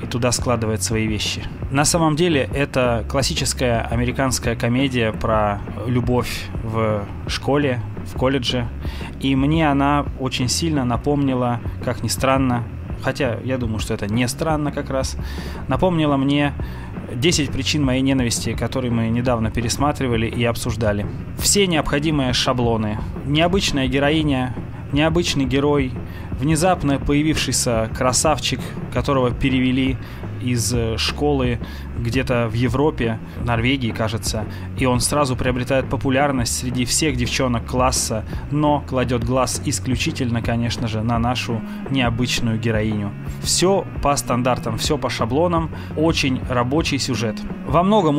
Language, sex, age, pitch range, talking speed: Russian, male, 20-39, 110-140 Hz, 120 wpm